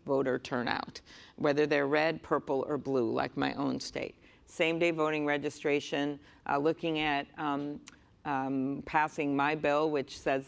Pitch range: 140-165 Hz